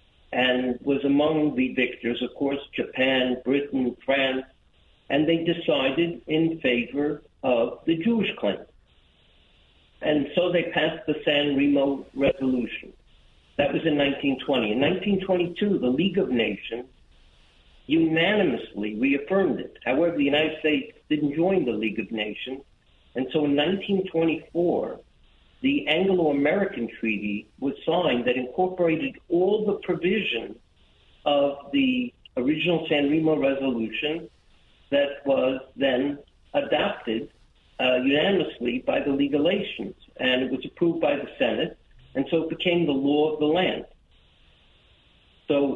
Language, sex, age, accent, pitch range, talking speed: English, male, 60-79, American, 125-170 Hz, 125 wpm